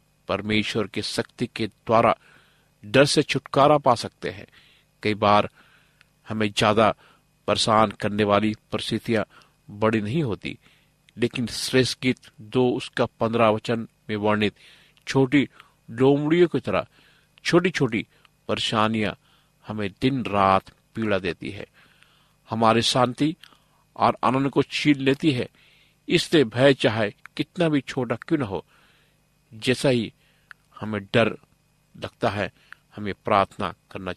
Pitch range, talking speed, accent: 110-145 Hz, 120 wpm, native